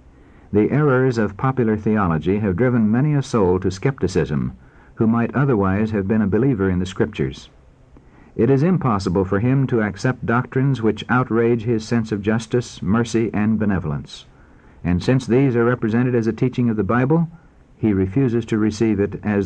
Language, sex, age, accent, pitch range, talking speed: English, male, 60-79, American, 95-125 Hz, 175 wpm